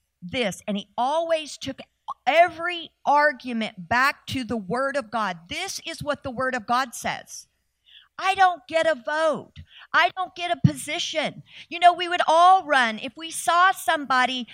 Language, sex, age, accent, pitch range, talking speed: English, female, 50-69, American, 220-330 Hz, 170 wpm